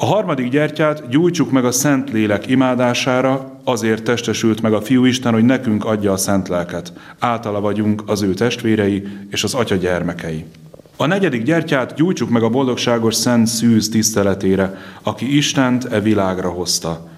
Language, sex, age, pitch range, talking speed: Hungarian, male, 30-49, 100-125 Hz, 155 wpm